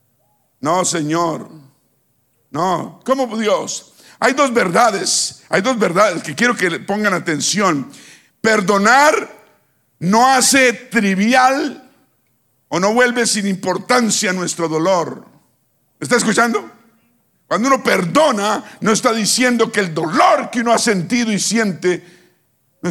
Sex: male